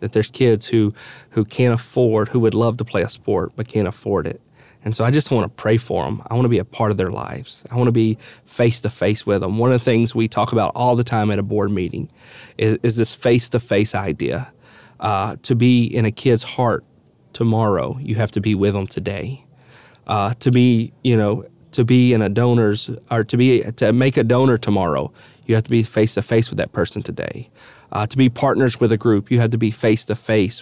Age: 30-49